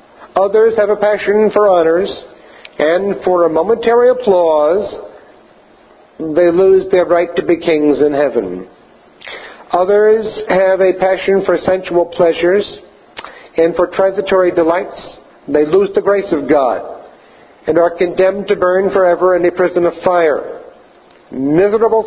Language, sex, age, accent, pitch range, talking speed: English, male, 50-69, American, 170-205 Hz, 135 wpm